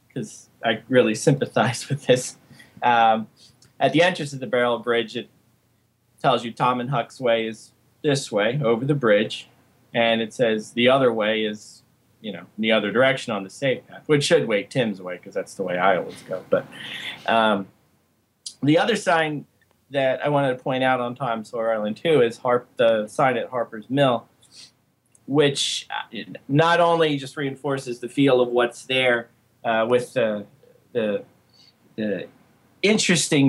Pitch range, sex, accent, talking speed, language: 115-140 Hz, male, American, 170 wpm, English